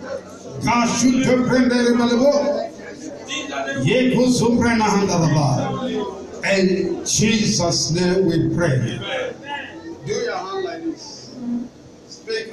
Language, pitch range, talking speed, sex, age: English, 170-230 Hz, 55 wpm, male, 50-69